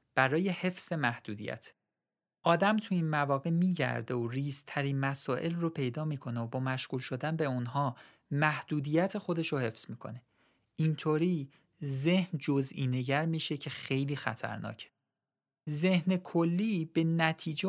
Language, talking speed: Persian, 125 wpm